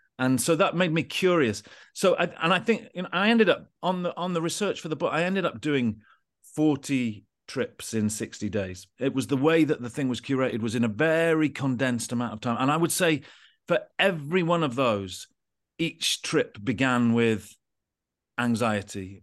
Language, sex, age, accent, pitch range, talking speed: English, male, 40-59, British, 115-155 Hz, 200 wpm